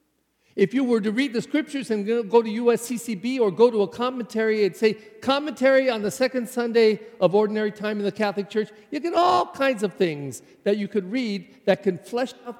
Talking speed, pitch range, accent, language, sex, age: 210 wpm, 165-260 Hz, American, English, male, 50-69